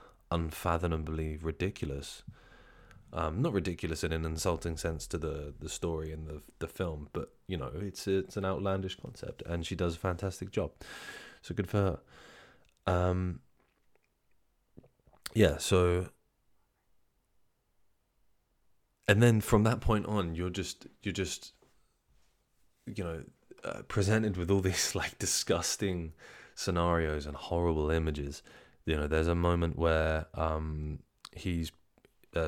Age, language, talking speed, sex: 20-39, English, 130 wpm, male